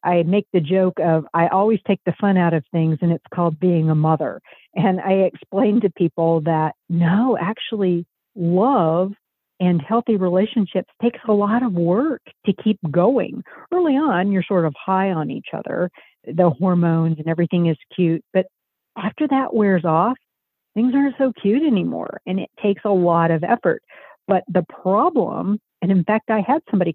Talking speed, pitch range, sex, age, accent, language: 180 wpm, 175-230 Hz, female, 50-69, American, English